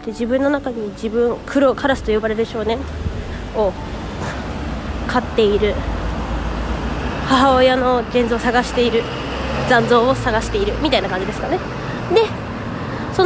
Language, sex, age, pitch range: Japanese, female, 20-39, 230-325 Hz